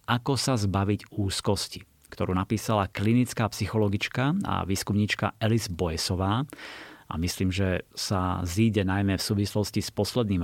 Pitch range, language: 100-120 Hz, Slovak